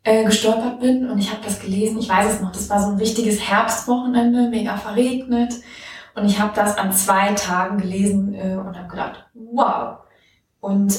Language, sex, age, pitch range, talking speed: German, female, 20-39, 200-225 Hz, 185 wpm